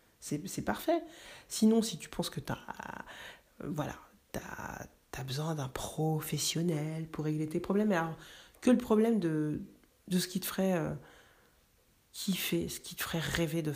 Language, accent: French, French